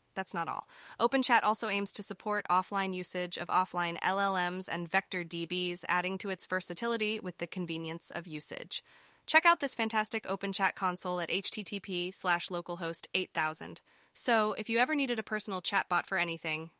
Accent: American